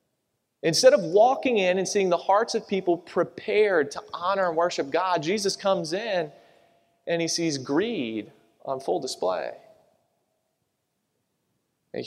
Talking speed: 135 wpm